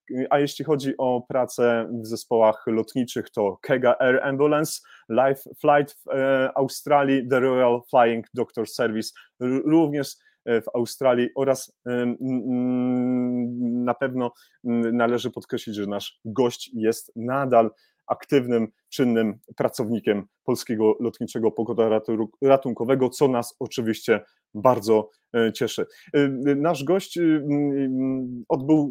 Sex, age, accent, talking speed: male, 30-49, native, 100 wpm